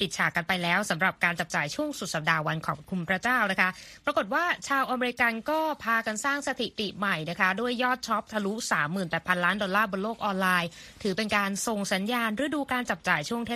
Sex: female